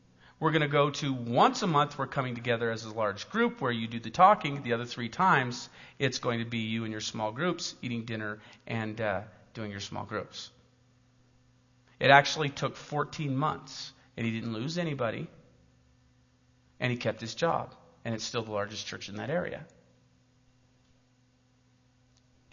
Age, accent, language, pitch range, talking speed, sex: 40-59, American, English, 125-175 Hz, 175 wpm, male